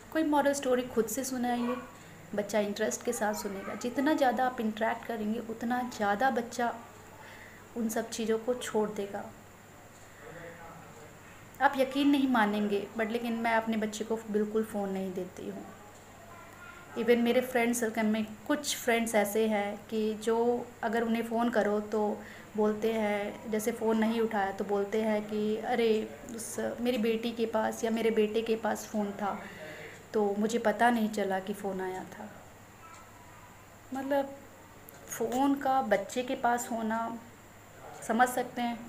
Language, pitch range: Hindi, 205-235 Hz